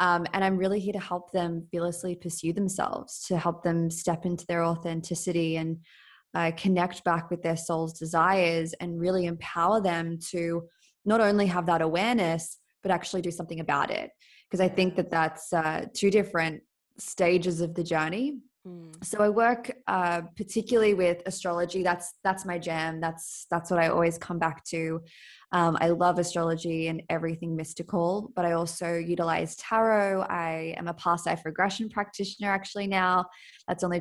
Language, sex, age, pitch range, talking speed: English, female, 20-39, 165-190 Hz, 170 wpm